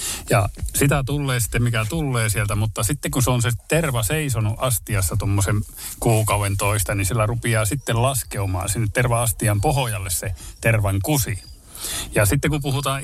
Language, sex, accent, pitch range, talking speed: Finnish, male, native, 100-120 Hz, 155 wpm